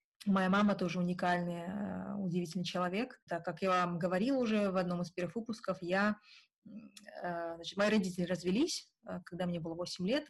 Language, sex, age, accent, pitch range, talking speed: Russian, female, 20-39, native, 175-205 Hz, 155 wpm